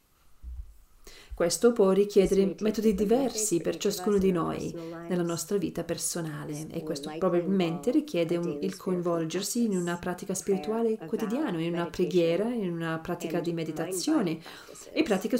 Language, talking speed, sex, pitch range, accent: Italian, 135 wpm, female, 170-220 Hz, native